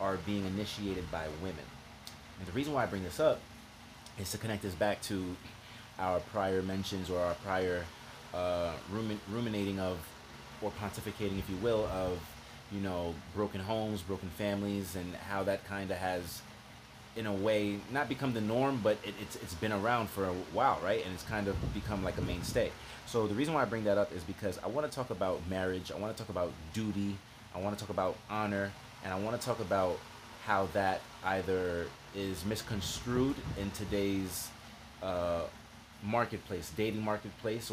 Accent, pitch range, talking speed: American, 90-105 Hz, 185 wpm